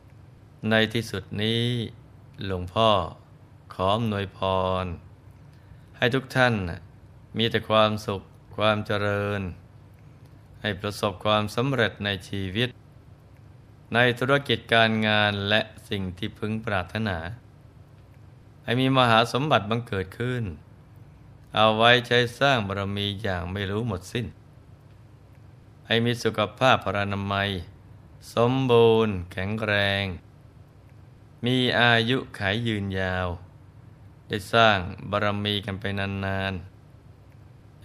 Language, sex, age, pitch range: Thai, male, 20-39, 100-120 Hz